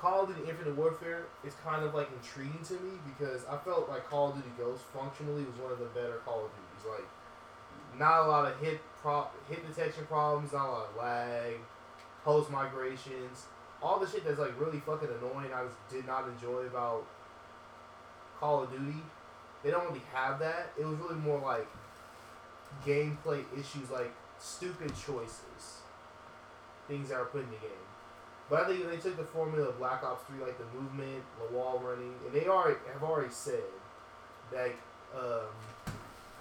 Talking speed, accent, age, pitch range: 185 wpm, American, 20-39, 115-150 Hz